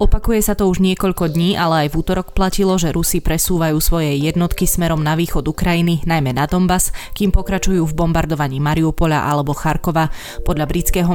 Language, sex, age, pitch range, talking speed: Slovak, female, 20-39, 155-180 Hz, 170 wpm